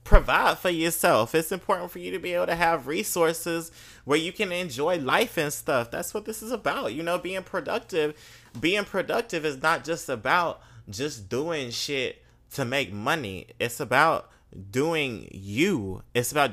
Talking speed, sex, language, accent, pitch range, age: 170 wpm, male, English, American, 105-145 Hz, 30-49